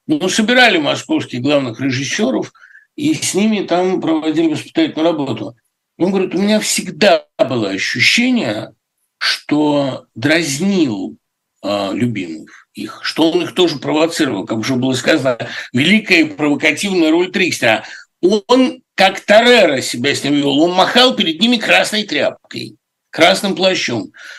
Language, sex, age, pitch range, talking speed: Russian, male, 60-79, 170-250 Hz, 130 wpm